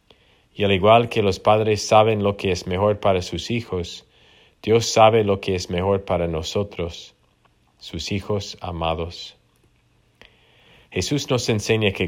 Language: English